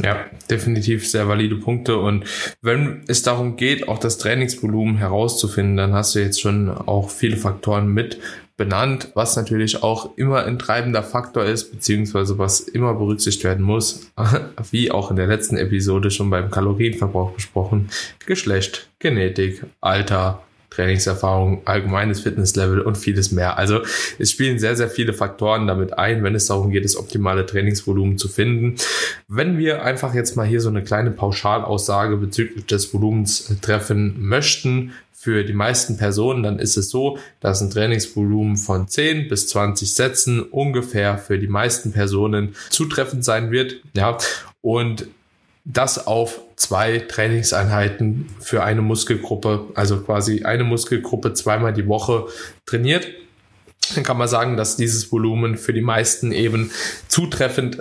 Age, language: 10-29, German